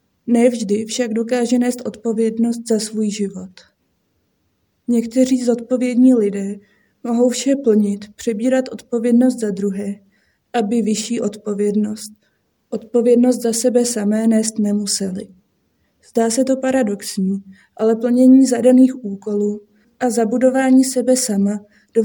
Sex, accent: female, native